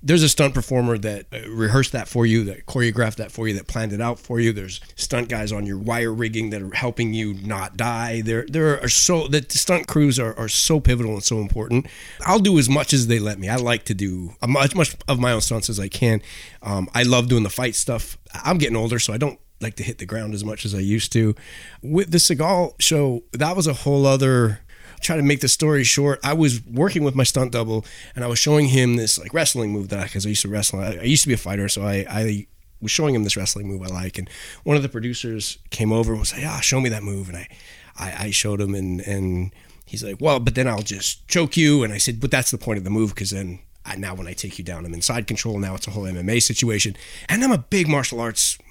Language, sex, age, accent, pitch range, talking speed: English, male, 30-49, American, 100-135 Hz, 265 wpm